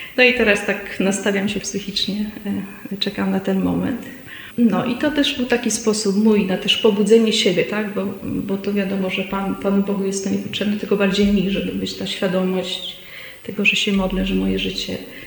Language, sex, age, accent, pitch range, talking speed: Polish, female, 30-49, native, 200-245 Hz, 195 wpm